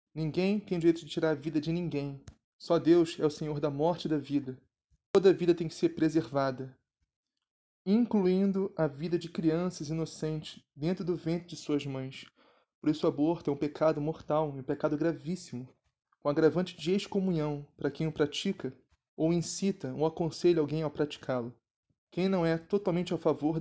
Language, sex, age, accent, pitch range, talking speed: Portuguese, male, 20-39, Brazilian, 145-170 Hz, 185 wpm